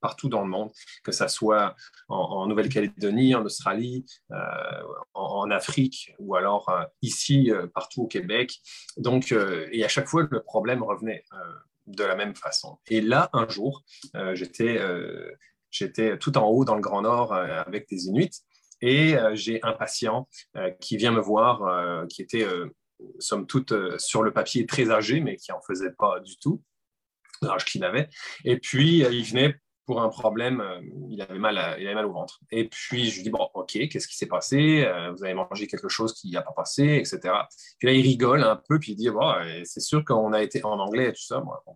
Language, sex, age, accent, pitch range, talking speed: French, male, 30-49, French, 110-135 Hz, 210 wpm